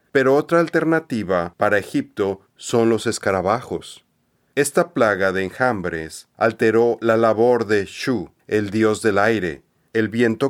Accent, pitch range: Mexican, 105-135 Hz